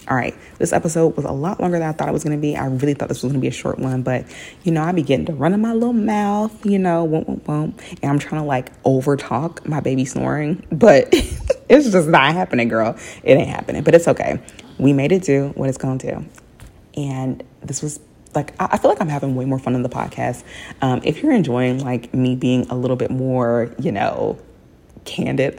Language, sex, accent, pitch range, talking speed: English, female, American, 130-175 Hz, 240 wpm